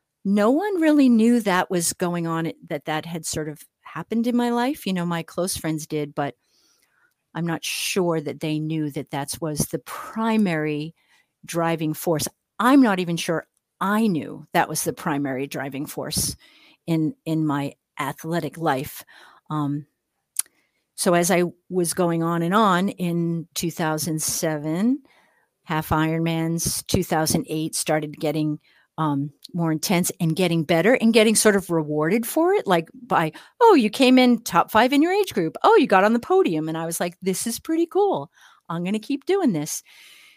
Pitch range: 155-210 Hz